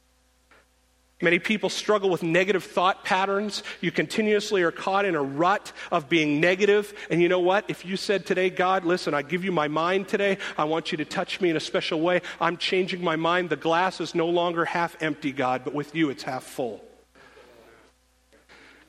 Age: 40-59